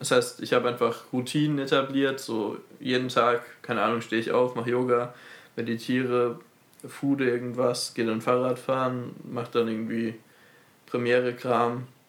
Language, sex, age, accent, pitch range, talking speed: German, male, 20-39, German, 120-140 Hz, 140 wpm